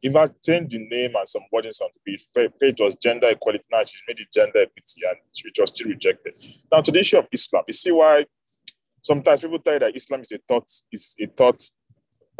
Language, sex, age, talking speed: English, male, 20-39, 225 wpm